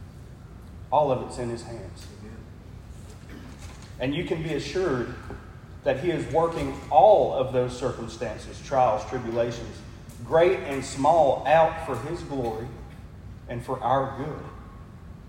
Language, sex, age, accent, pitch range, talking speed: English, male, 30-49, American, 115-145 Hz, 125 wpm